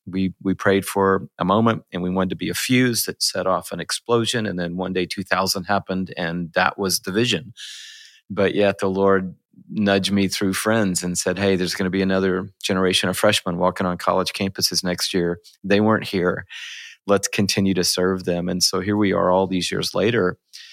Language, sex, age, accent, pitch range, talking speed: English, male, 40-59, American, 90-100 Hz, 205 wpm